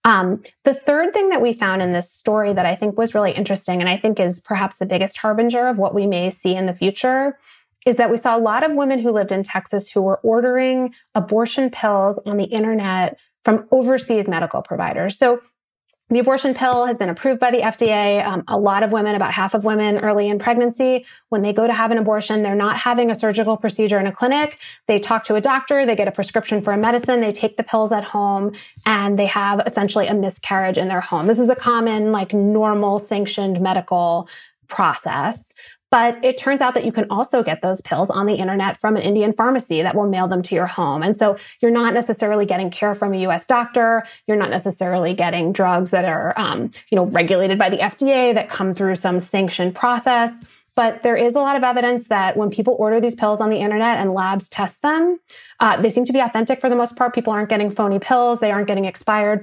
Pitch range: 195-240 Hz